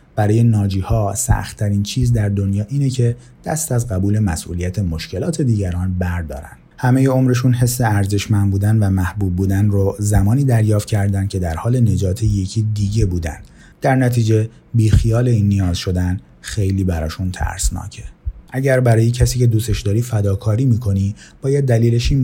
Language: Persian